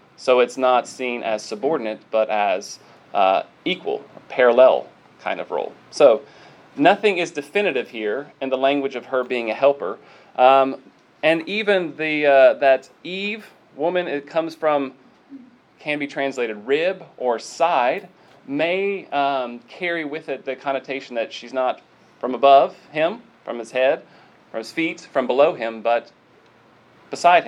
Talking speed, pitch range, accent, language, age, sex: 150 wpm, 130-165 Hz, American, English, 30-49, male